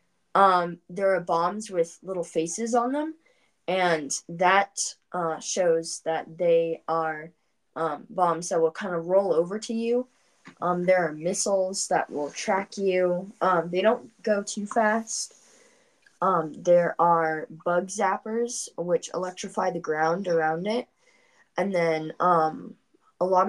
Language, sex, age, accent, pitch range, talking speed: English, female, 20-39, American, 170-205 Hz, 145 wpm